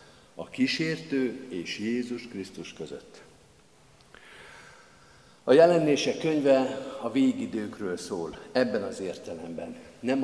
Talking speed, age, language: 95 wpm, 50-69, Hungarian